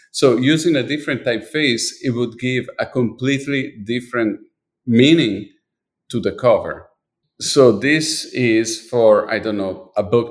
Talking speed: 140 wpm